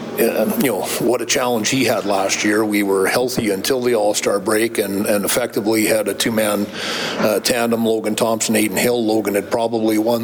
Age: 40-59